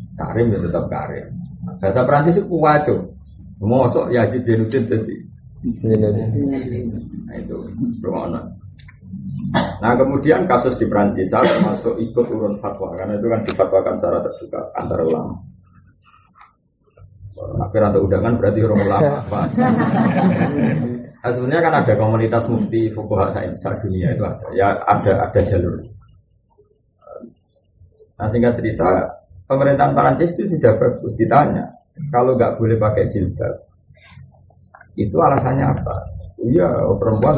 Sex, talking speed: male, 125 wpm